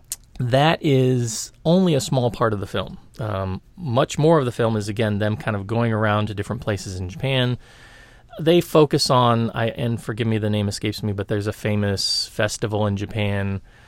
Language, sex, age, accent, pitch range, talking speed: English, male, 30-49, American, 100-120 Hz, 195 wpm